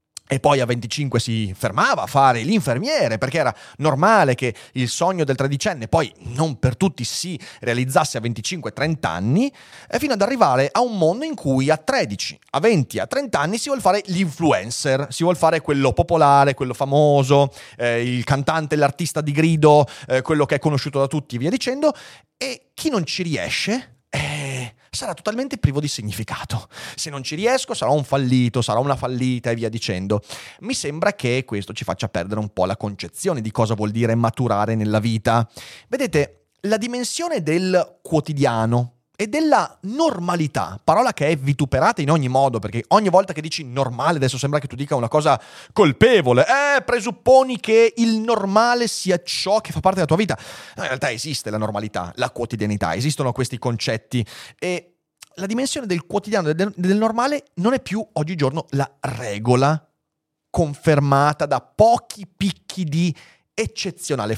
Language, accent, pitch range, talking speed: Italian, native, 125-185 Hz, 170 wpm